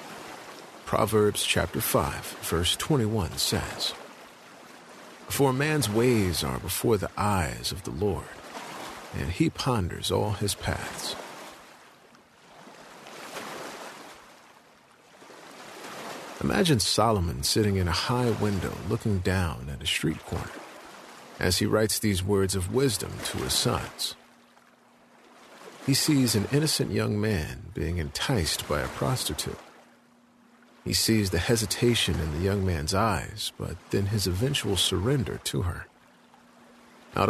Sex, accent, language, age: male, American, English, 50-69